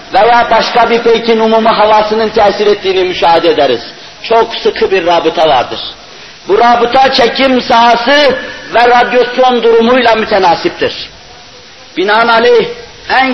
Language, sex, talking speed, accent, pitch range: Turkish, male, 110 wpm, native, 225-250 Hz